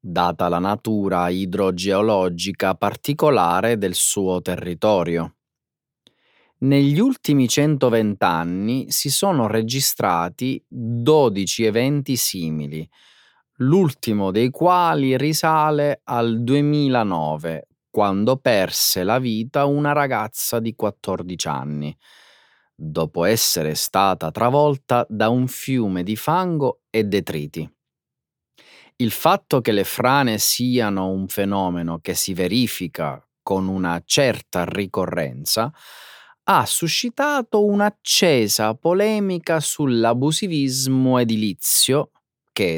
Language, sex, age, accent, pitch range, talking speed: Italian, male, 30-49, native, 95-145 Hz, 95 wpm